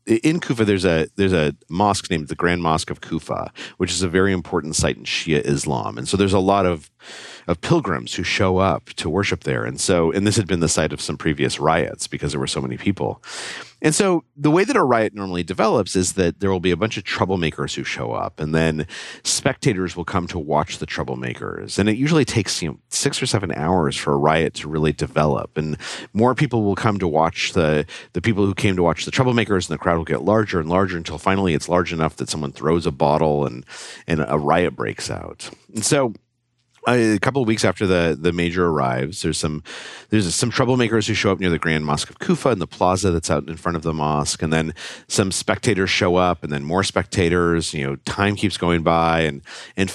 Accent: American